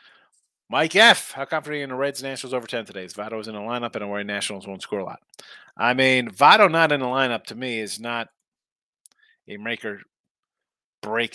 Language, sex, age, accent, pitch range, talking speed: English, male, 30-49, American, 105-125 Hz, 215 wpm